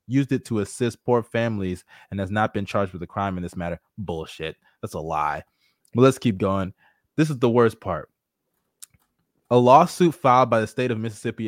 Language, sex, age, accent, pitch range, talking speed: English, male, 20-39, American, 105-125 Hz, 200 wpm